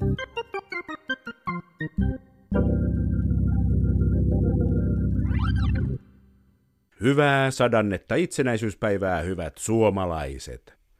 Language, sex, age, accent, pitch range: Finnish, male, 50-69, native, 90-125 Hz